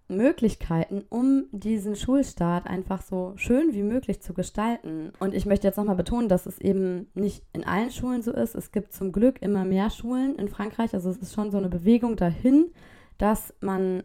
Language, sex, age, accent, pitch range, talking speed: German, female, 20-39, German, 175-210 Hz, 190 wpm